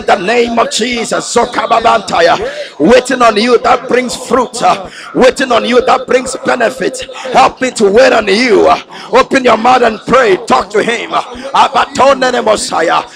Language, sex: English, male